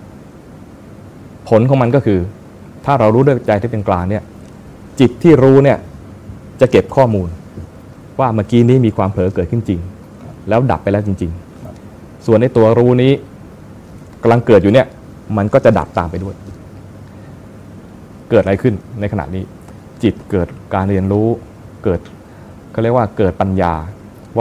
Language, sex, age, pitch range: Thai, male, 20-39, 100-125 Hz